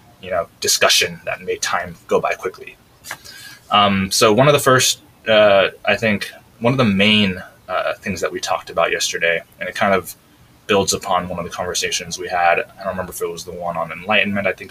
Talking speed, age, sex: 215 wpm, 20-39, male